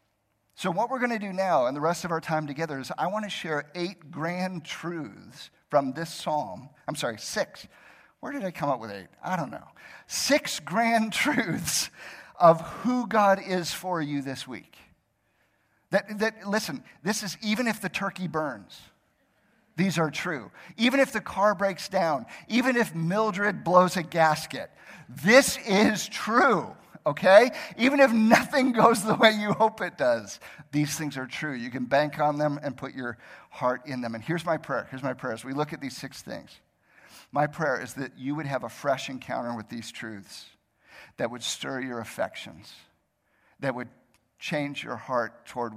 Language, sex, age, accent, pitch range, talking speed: English, male, 50-69, American, 125-195 Hz, 185 wpm